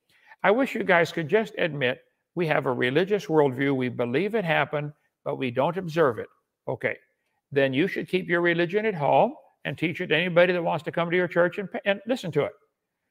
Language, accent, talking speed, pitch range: English, American, 215 wpm, 150-200 Hz